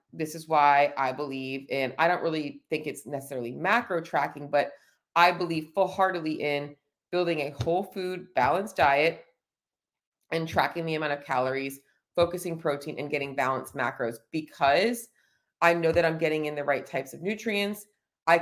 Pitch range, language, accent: 145-180 Hz, English, American